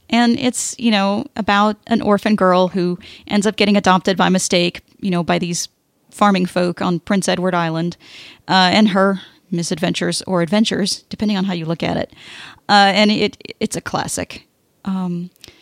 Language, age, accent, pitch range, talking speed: English, 30-49, American, 180-220 Hz, 175 wpm